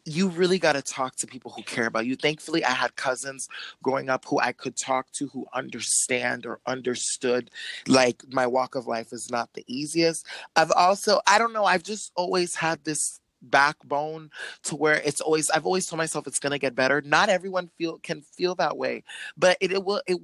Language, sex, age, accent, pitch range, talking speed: English, male, 30-49, American, 130-175 Hz, 210 wpm